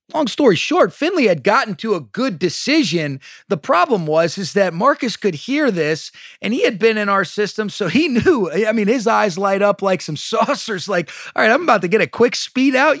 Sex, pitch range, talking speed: male, 160-205 Hz, 225 wpm